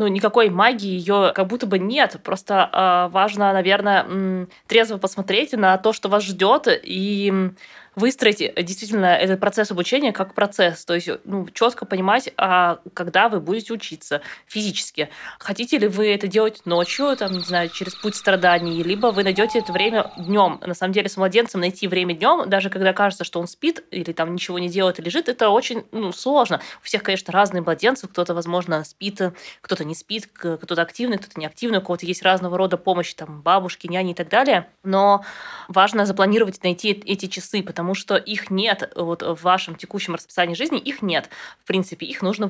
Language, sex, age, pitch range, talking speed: Russian, female, 20-39, 180-205 Hz, 185 wpm